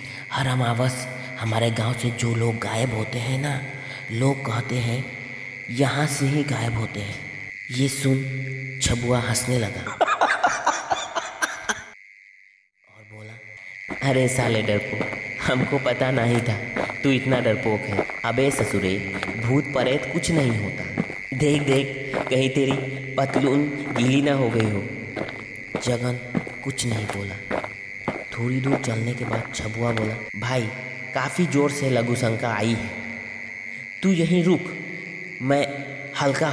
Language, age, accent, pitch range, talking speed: Hindi, 20-39, native, 115-140 Hz, 130 wpm